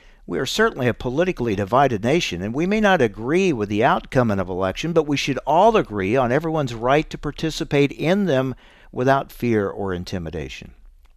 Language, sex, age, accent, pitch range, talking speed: English, male, 60-79, American, 105-145 Hz, 175 wpm